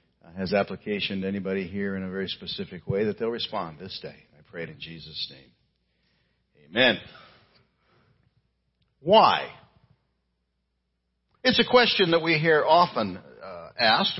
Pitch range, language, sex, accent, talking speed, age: 100-155 Hz, English, male, American, 130 wpm, 60-79